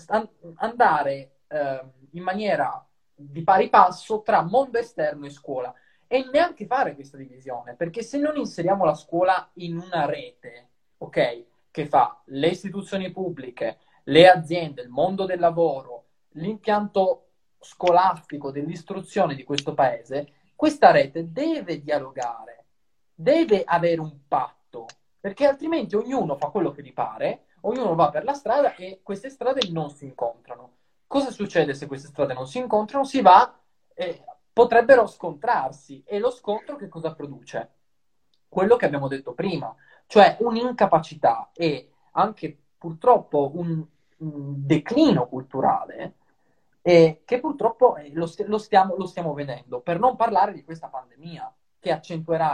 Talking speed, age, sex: 140 wpm, 20-39, male